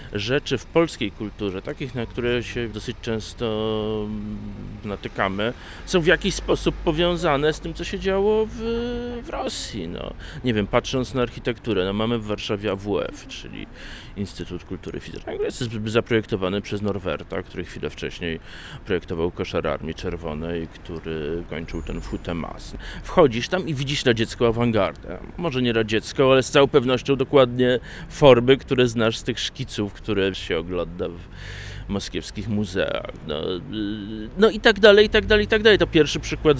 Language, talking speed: Polish, 155 wpm